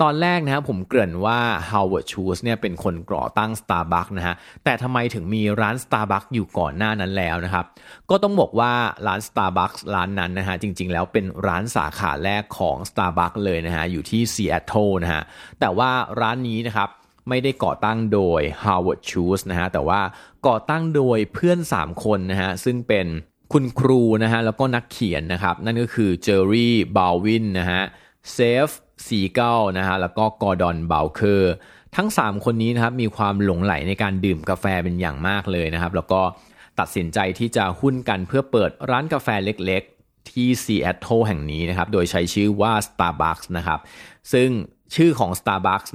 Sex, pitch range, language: male, 90-120 Hz, Thai